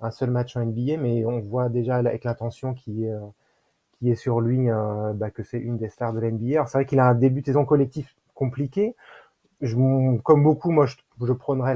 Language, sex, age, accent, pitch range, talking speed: French, male, 20-39, French, 115-135 Hz, 225 wpm